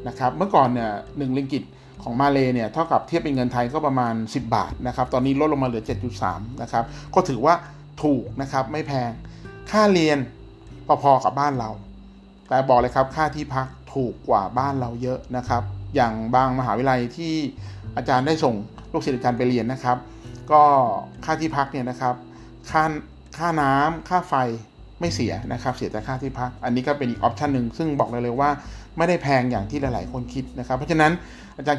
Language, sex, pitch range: Thai, male, 120-145 Hz